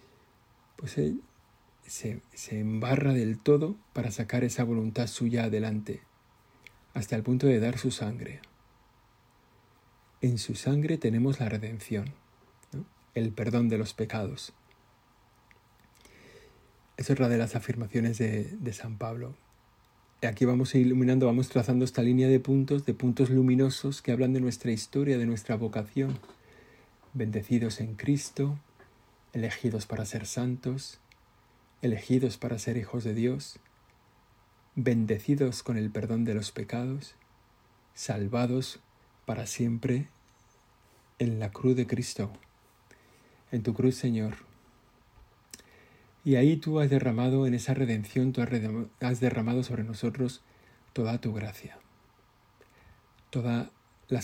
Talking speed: 125 wpm